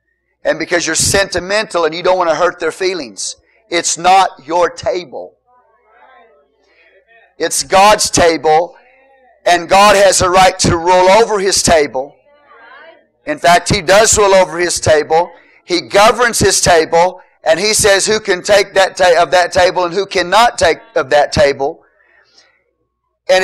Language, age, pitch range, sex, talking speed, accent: English, 40-59, 175-225 Hz, male, 155 wpm, American